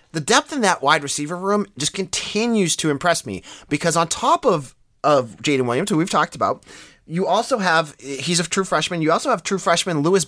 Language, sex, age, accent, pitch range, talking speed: English, male, 30-49, American, 125-190 Hz, 215 wpm